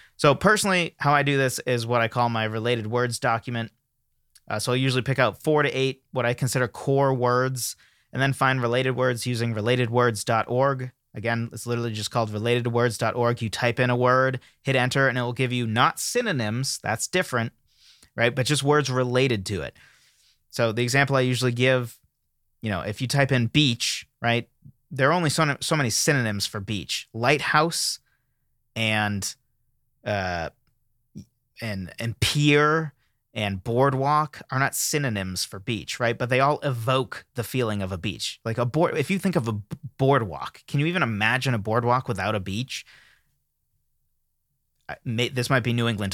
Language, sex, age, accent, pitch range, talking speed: English, male, 30-49, American, 115-135 Hz, 175 wpm